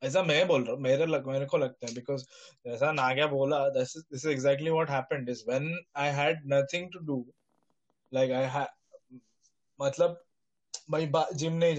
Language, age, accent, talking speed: Hindi, 20-39, native, 70 wpm